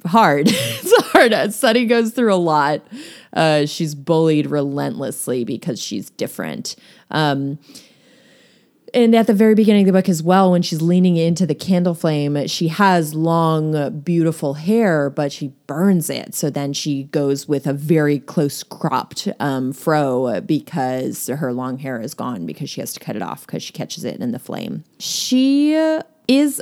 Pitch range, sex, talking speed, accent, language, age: 140-185 Hz, female, 170 wpm, American, English, 20-39